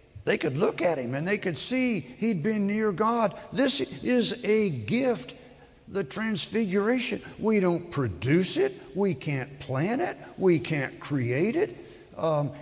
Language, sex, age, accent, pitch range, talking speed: English, male, 60-79, American, 150-210 Hz, 150 wpm